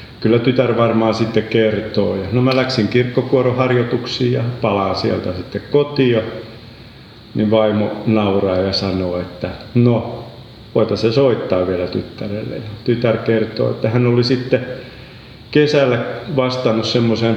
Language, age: Finnish, 50-69